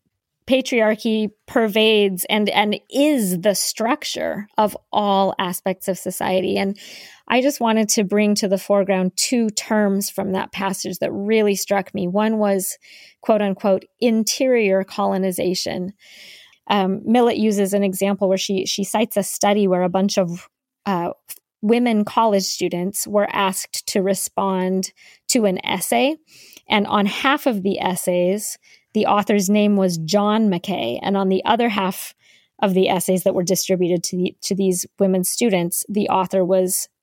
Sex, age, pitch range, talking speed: female, 20-39, 190-215 Hz, 150 wpm